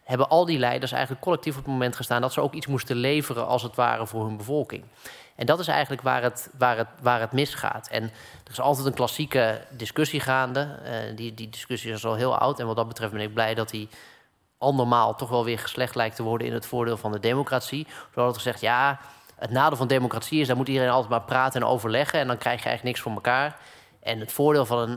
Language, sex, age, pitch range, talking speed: Dutch, male, 20-39, 115-135 Hz, 250 wpm